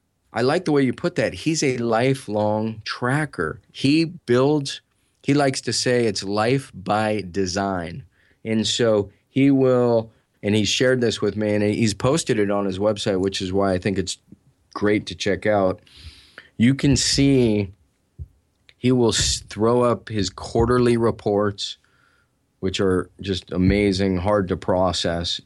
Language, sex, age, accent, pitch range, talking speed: English, male, 30-49, American, 100-120 Hz, 155 wpm